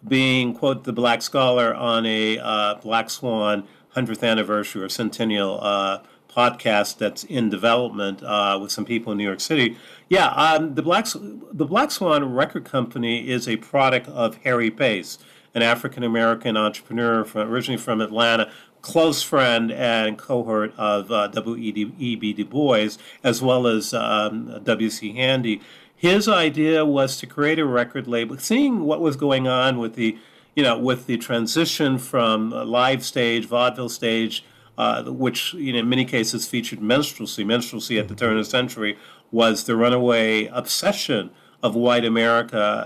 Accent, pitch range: American, 110-125 Hz